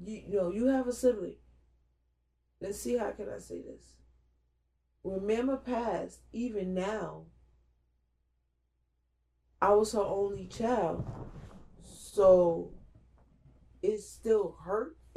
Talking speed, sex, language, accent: 105 wpm, female, English, American